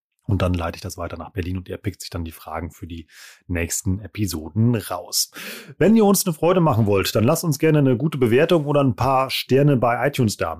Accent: German